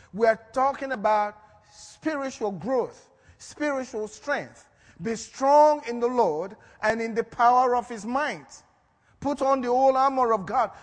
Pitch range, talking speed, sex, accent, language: 225-275 Hz, 150 wpm, male, Nigerian, English